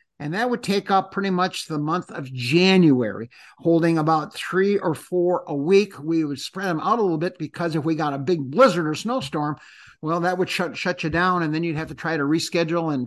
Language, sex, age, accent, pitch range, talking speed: English, male, 50-69, American, 145-180 Hz, 235 wpm